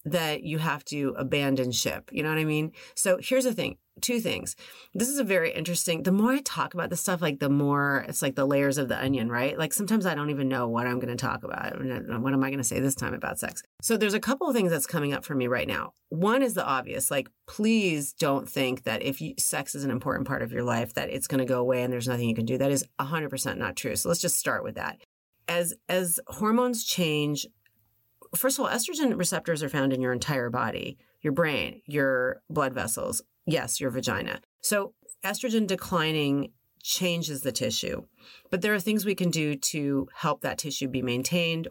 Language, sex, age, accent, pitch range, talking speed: English, female, 30-49, American, 130-170 Hz, 230 wpm